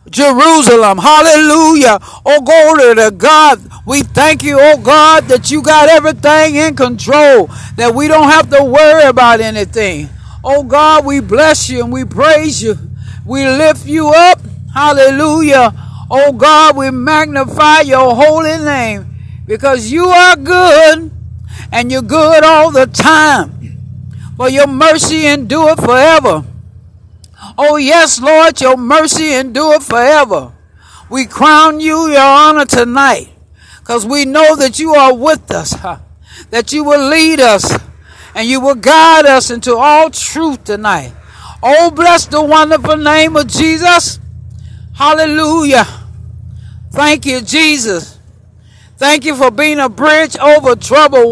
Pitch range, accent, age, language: 245-310 Hz, American, 60-79, English